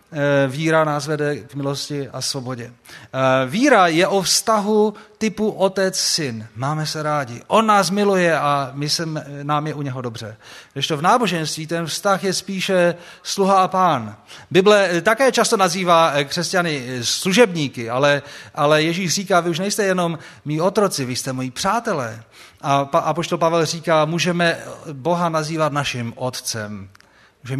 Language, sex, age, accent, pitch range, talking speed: Czech, male, 30-49, native, 130-175 Hz, 150 wpm